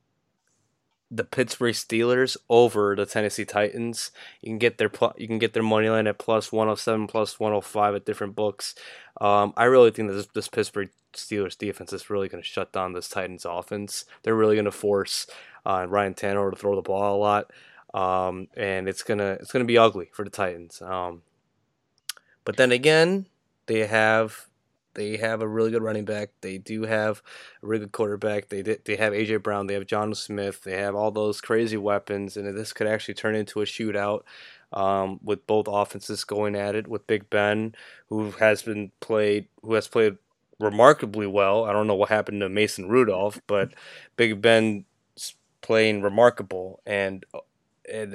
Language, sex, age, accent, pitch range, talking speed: English, male, 20-39, American, 100-110 Hz, 185 wpm